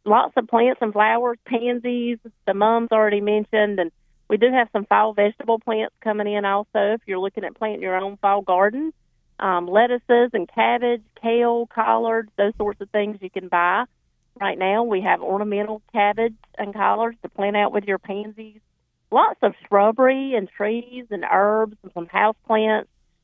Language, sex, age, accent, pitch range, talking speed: English, female, 40-59, American, 180-220 Hz, 175 wpm